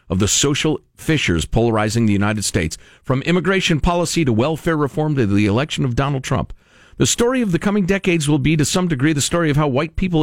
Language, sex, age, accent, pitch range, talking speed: English, male, 50-69, American, 110-160 Hz, 215 wpm